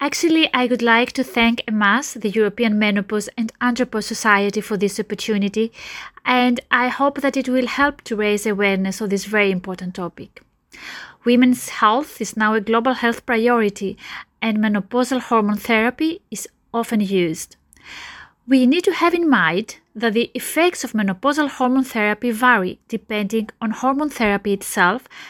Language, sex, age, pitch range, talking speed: English, female, 30-49, 215-270 Hz, 155 wpm